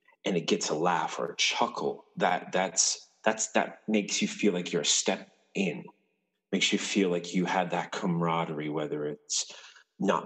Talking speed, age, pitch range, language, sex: 180 wpm, 30-49, 85-105 Hz, English, male